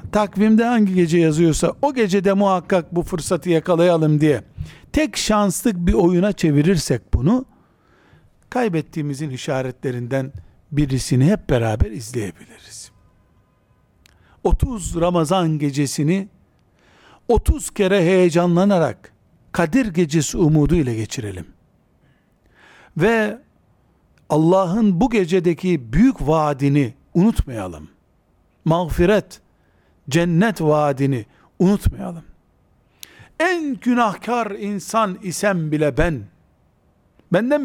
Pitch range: 140-200 Hz